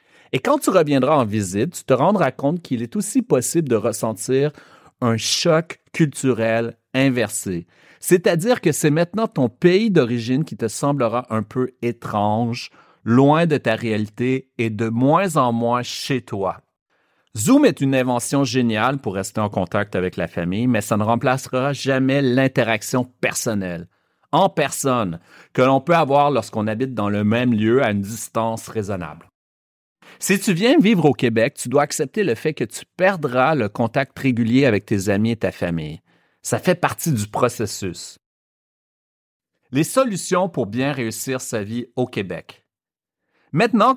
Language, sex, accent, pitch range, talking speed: French, male, Canadian, 110-145 Hz, 160 wpm